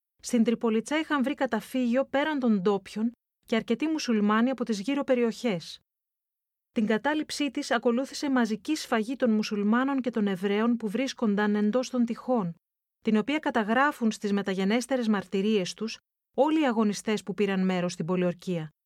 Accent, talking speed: native, 145 wpm